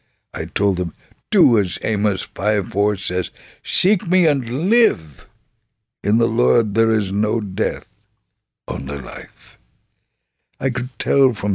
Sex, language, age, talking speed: male, English, 60-79, 135 wpm